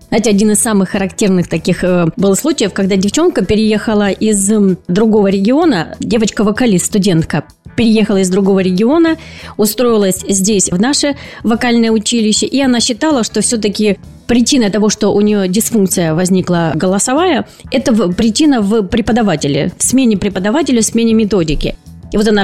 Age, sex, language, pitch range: 30-49, female, Russian, 190-235 Hz